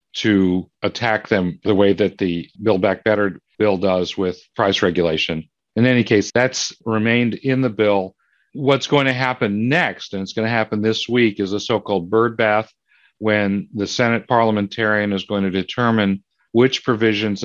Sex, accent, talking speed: male, American, 170 wpm